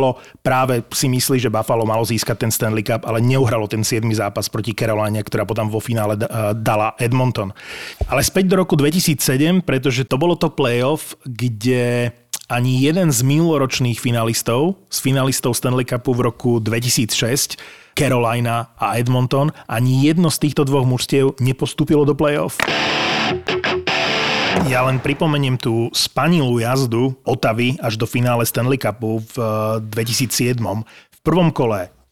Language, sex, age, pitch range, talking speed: Slovak, male, 30-49, 115-140 Hz, 140 wpm